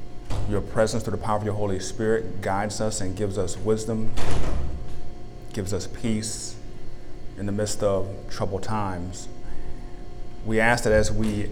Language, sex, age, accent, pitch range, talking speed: English, male, 30-49, American, 90-110 Hz, 150 wpm